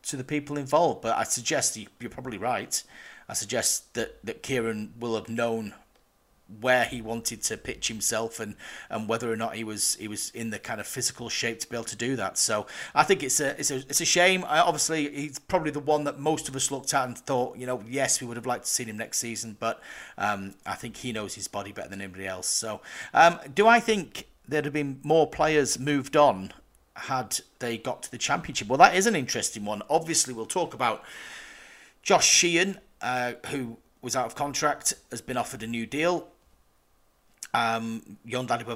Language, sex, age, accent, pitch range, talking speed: English, male, 40-59, British, 110-150 Hz, 215 wpm